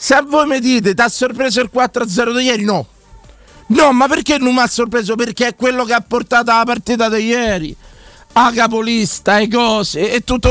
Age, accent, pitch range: 40-59, native, 195-235 Hz